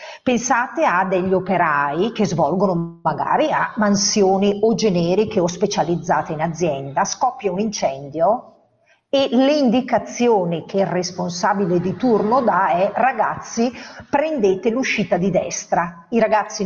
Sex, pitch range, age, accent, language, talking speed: female, 175-230 Hz, 40-59, native, Italian, 125 wpm